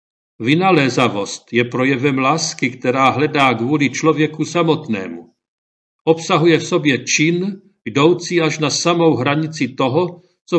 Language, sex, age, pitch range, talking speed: Czech, male, 50-69, 145-170 Hz, 115 wpm